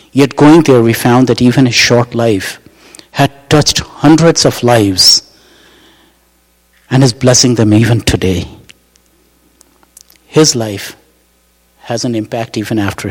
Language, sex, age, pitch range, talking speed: English, male, 50-69, 105-140 Hz, 130 wpm